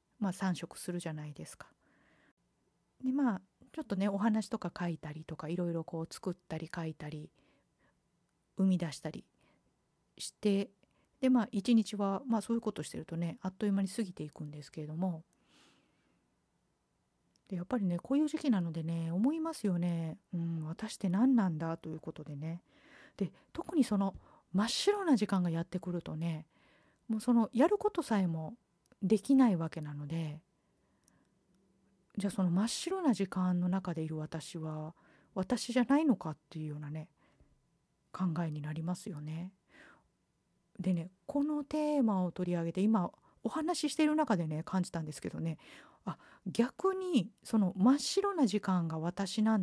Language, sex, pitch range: Japanese, female, 165-225 Hz